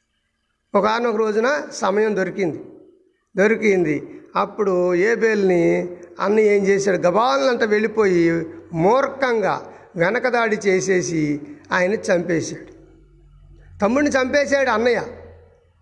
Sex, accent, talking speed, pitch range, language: male, native, 80 wpm, 185-270 Hz, Telugu